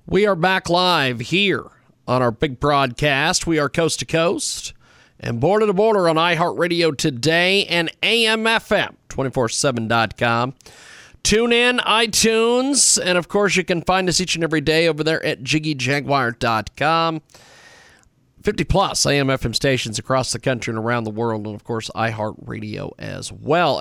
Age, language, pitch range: 40-59, English, 125-170 Hz